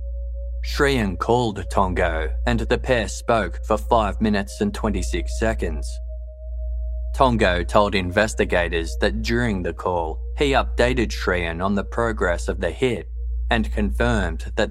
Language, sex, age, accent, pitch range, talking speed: English, male, 20-39, Australian, 65-105 Hz, 130 wpm